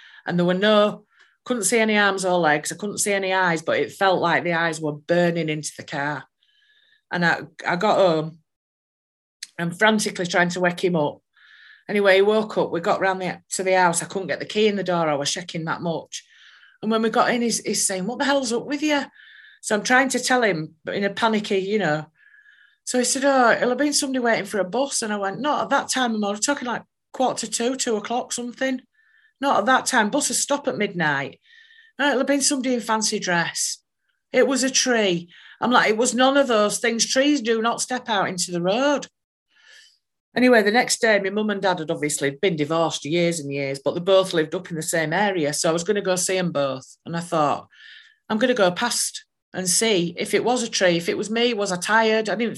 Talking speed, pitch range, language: 240 wpm, 180-250 Hz, English